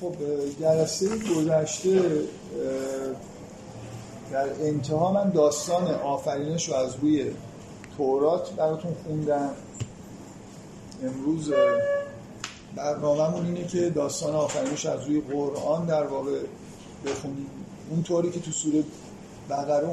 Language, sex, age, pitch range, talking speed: Persian, male, 50-69, 145-170 Hz, 100 wpm